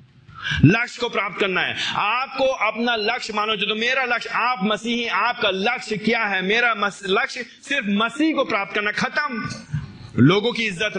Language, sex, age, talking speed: Hindi, male, 30-49, 165 wpm